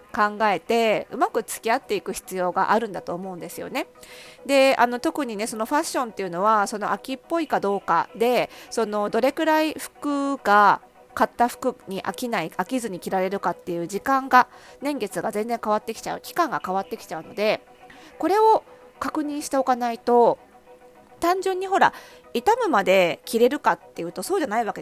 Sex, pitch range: female, 205-285 Hz